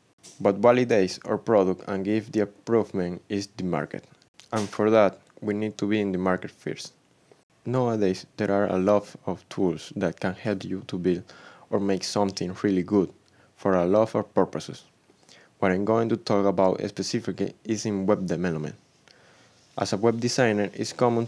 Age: 20-39